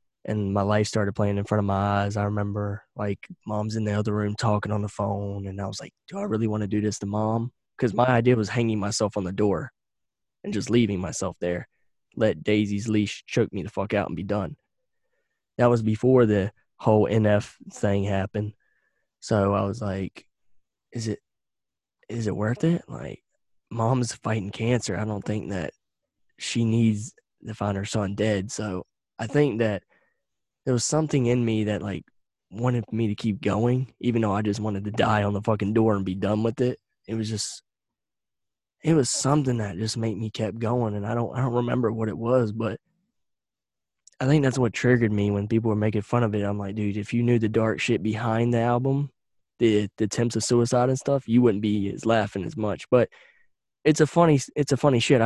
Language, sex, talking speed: English, male, 210 wpm